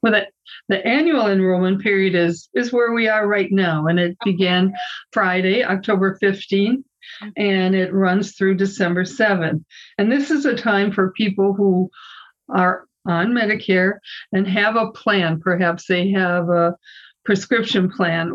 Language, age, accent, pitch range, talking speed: English, 50-69, American, 185-210 Hz, 150 wpm